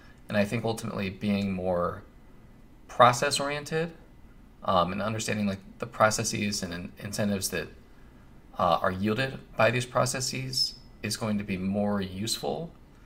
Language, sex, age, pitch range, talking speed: English, male, 20-39, 90-115 Hz, 135 wpm